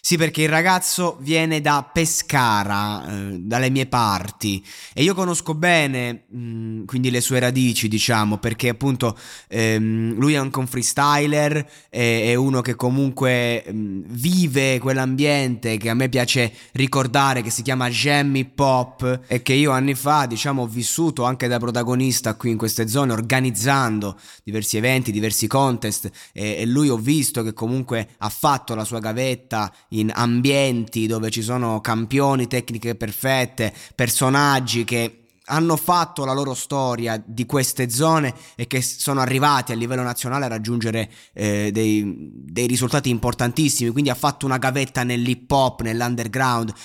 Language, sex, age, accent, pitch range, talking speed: Italian, male, 20-39, native, 115-135 Hz, 150 wpm